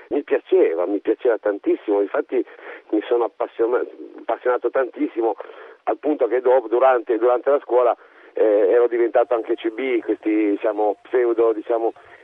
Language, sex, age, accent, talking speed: Italian, male, 50-69, native, 130 wpm